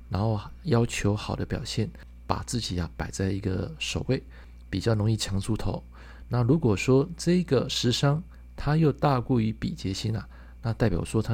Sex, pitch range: male, 85-120 Hz